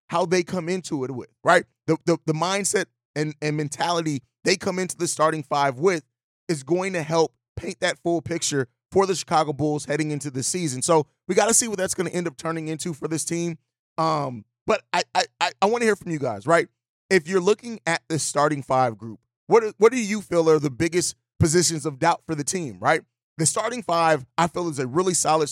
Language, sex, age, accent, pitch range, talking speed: English, male, 30-49, American, 145-180 Hz, 230 wpm